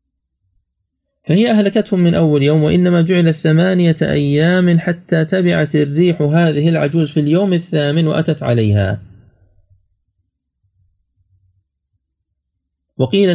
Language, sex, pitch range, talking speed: Arabic, male, 110-145 Hz, 90 wpm